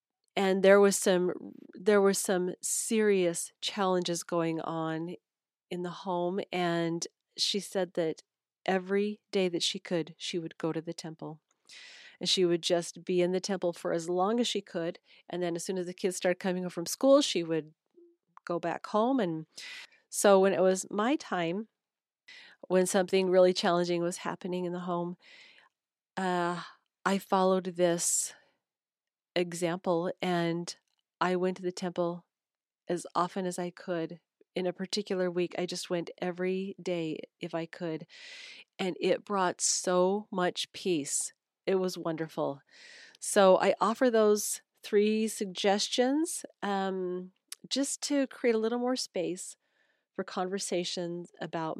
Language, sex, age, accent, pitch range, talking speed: English, female, 40-59, American, 175-205 Hz, 150 wpm